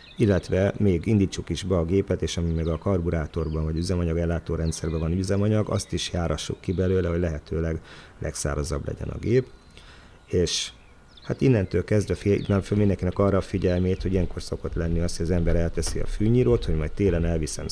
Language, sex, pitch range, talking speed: Hungarian, male, 80-100 Hz, 185 wpm